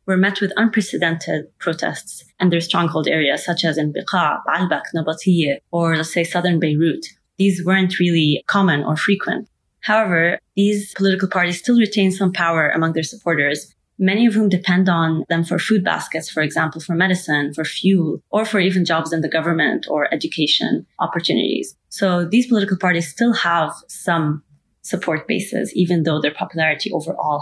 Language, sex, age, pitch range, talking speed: English, female, 20-39, 160-190 Hz, 165 wpm